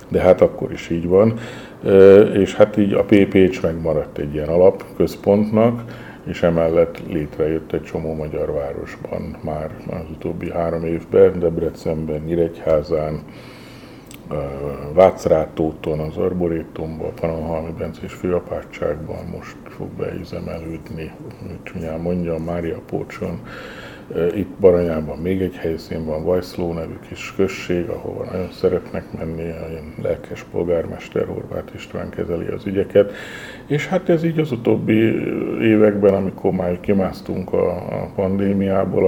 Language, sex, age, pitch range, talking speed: Hungarian, male, 50-69, 80-100 Hz, 120 wpm